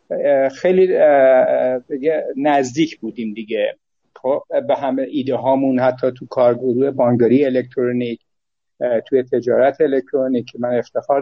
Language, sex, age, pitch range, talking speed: Persian, male, 60-79, 140-195 Hz, 100 wpm